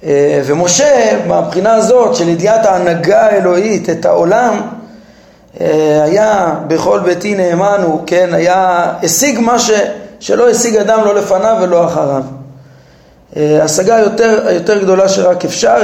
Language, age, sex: Hebrew, 30-49, male